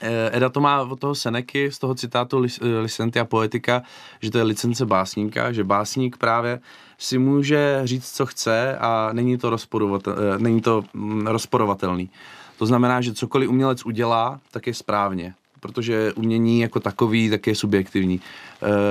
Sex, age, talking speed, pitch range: male, 20-39, 145 wpm, 100-120 Hz